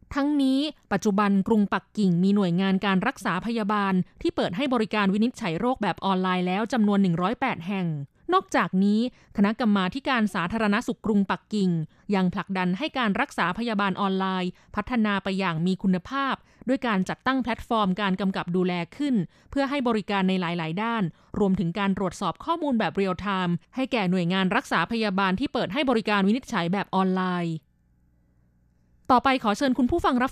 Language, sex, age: Thai, female, 20-39